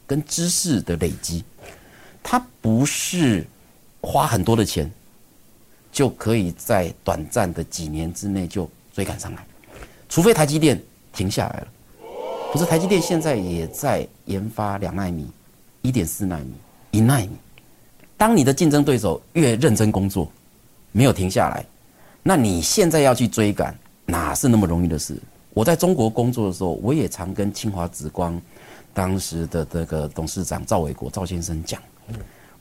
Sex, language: male, Chinese